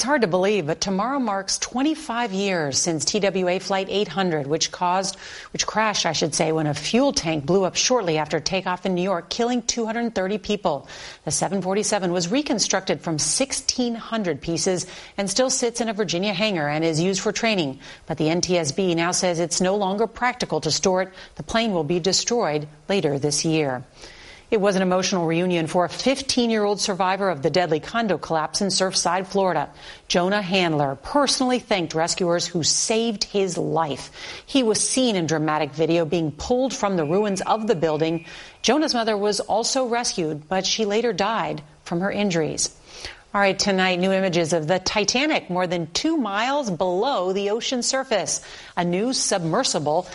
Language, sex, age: English, female, 40-59